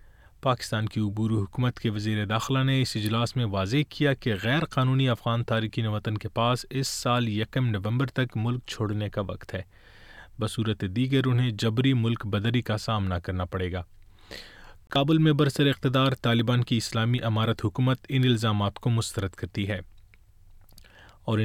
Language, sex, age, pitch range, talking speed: Urdu, male, 30-49, 100-125 Hz, 160 wpm